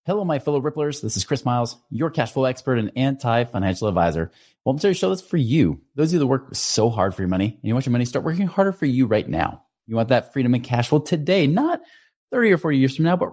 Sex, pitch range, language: male, 95-140 Hz, English